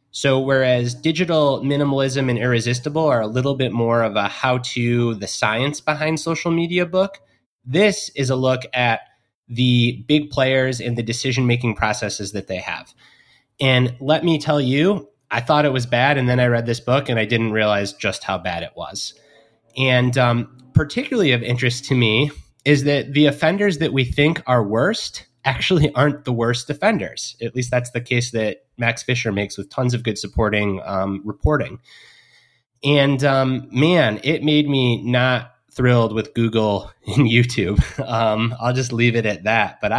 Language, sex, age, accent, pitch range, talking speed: English, male, 20-39, American, 115-140 Hz, 175 wpm